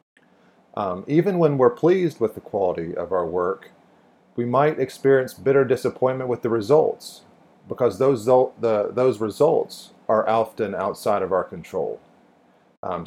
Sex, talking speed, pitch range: male, 140 wpm, 110-135 Hz